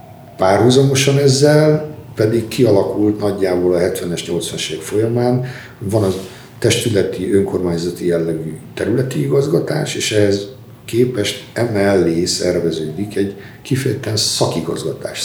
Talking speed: 90 wpm